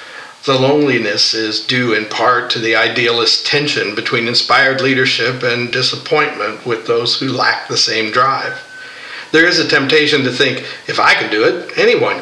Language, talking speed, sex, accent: English, 165 wpm, male, American